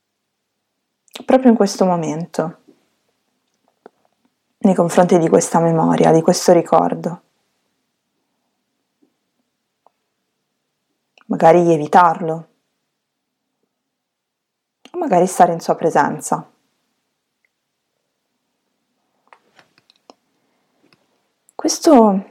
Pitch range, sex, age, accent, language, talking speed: 175-235 Hz, female, 20-39, native, Italian, 55 wpm